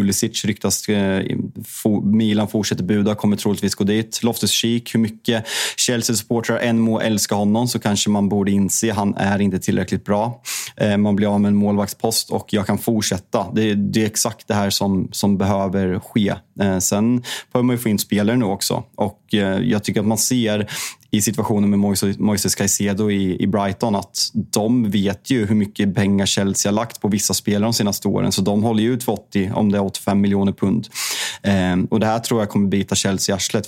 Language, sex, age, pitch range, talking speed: Swedish, male, 20-39, 100-110 Hz, 190 wpm